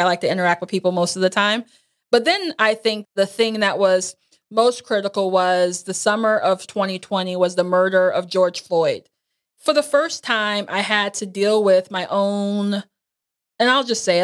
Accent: American